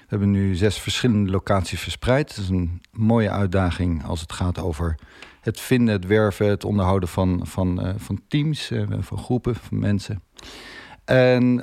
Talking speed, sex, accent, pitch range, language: 170 wpm, male, Dutch, 95-120 Hz, Dutch